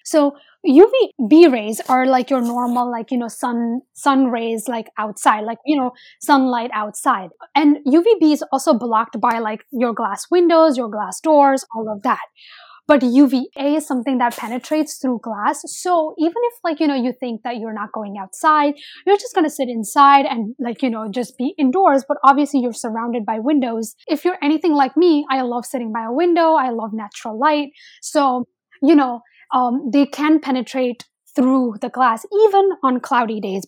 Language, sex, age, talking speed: English, female, 10-29, 185 wpm